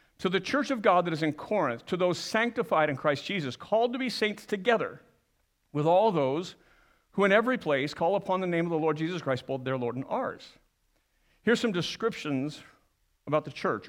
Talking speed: 205 wpm